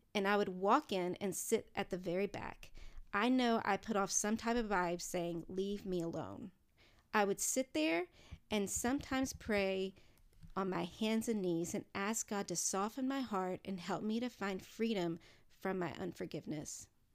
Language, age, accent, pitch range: English, 40-59, American, 185-235 Hz